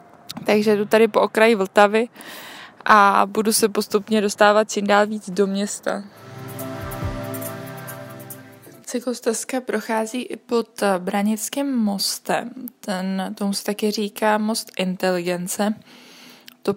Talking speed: 105 wpm